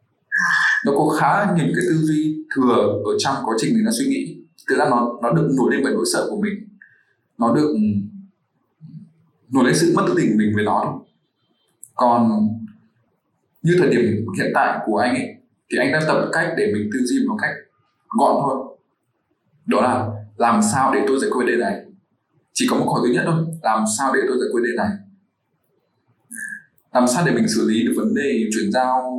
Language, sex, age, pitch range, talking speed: English, male, 20-39, 115-180 Hz, 195 wpm